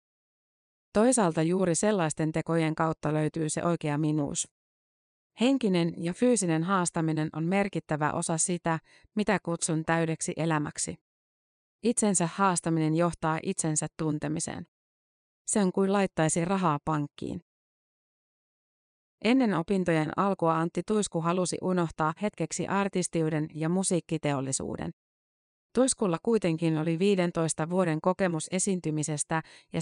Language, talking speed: Finnish, 105 wpm